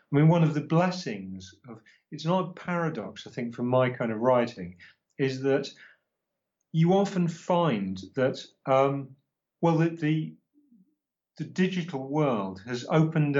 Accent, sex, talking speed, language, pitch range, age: British, male, 140 wpm, English, 120-155 Hz, 40-59